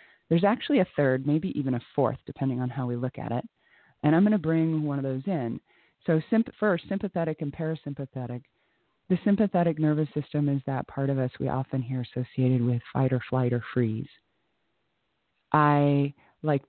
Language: English